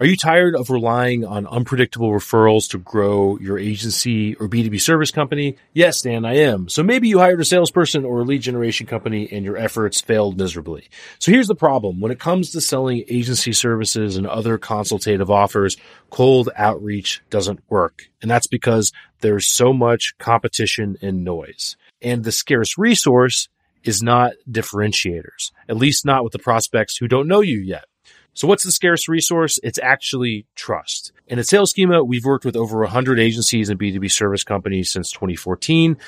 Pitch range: 105-130 Hz